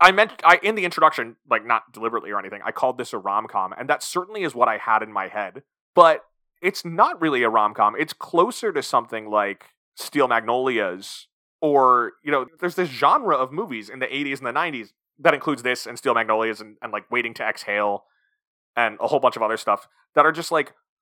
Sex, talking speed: male, 215 wpm